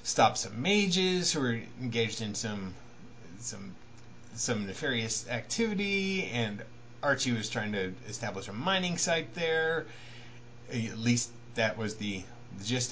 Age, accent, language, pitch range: 30-49, American, English, 100-120 Hz